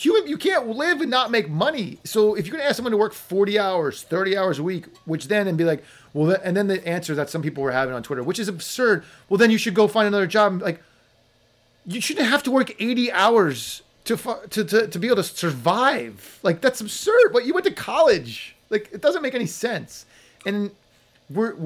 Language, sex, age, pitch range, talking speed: English, male, 30-49, 155-220 Hz, 225 wpm